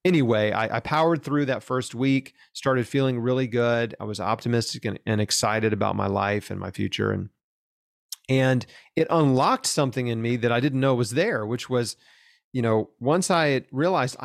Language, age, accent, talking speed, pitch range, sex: English, 30-49, American, 185 wpm, 110-140 Hz, male